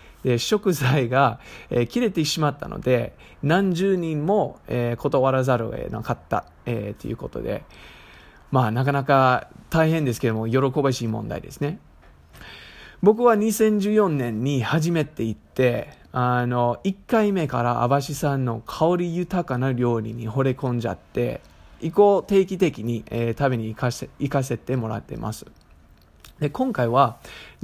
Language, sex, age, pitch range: English, male, 20-39, 120-175 Hz